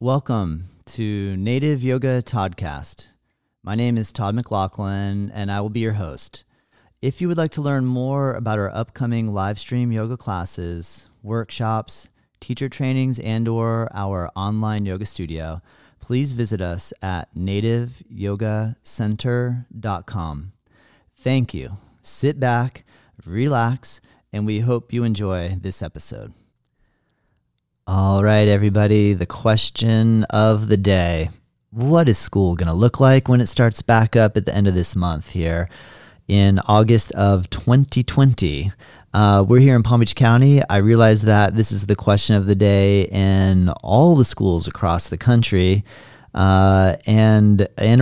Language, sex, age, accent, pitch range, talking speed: English, male, 40-59, American, 95-120 Hz, 140 wpm